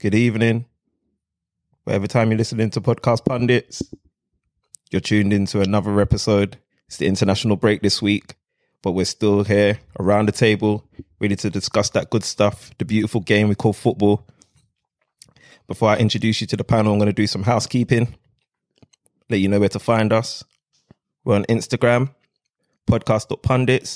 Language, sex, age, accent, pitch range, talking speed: English, male, 20-39, British, 100-115 Hz, 165 wpm